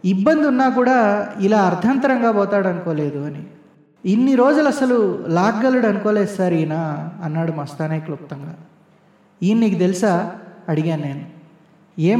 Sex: male